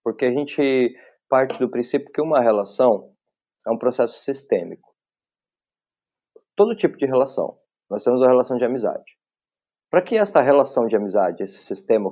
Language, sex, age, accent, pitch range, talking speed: Portuguese, male, 20-39, Brazilian, 115-175 Hz, 155 wpm